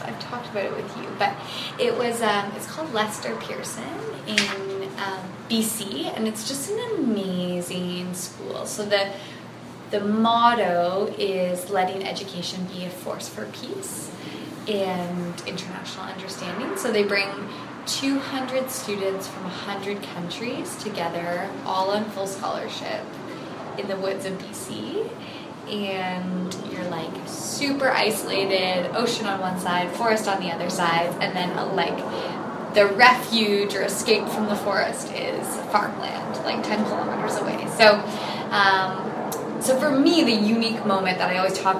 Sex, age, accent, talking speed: female, 20-39, American, 140 wpm